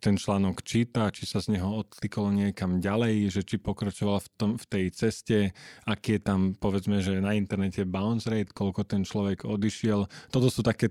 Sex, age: male, 20-39